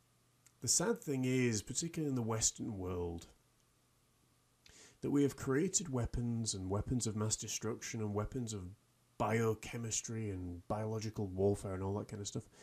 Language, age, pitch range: English, 30-49, 110-130 Hz